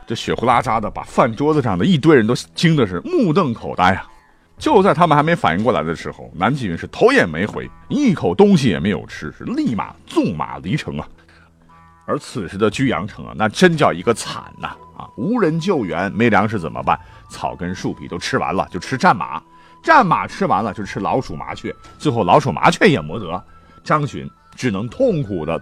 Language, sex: Chinese, male